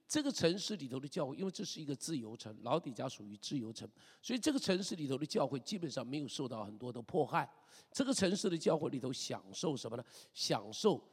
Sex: male